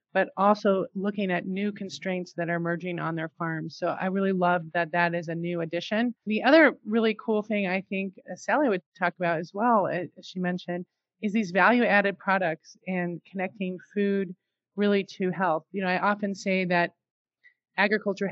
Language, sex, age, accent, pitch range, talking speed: English, male, 30-49, American, 180-210 Hz, 180 wpm